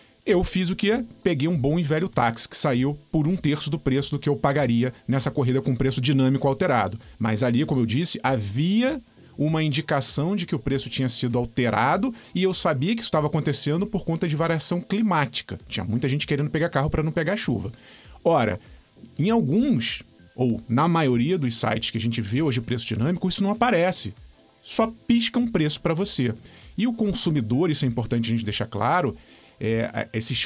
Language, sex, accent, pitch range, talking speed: Portuguese, male, Brazilian, 125-185 Hz, 195 wpm